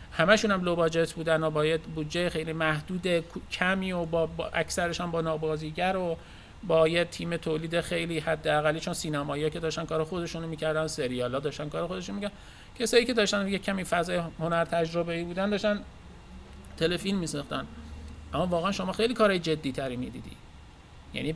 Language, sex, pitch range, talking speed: Persian, male, 145-185 Hz, 165 wpm